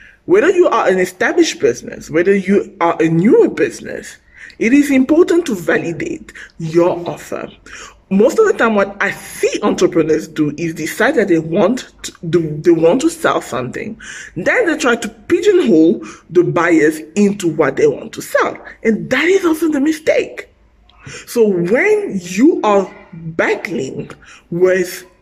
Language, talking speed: English, 150 wpm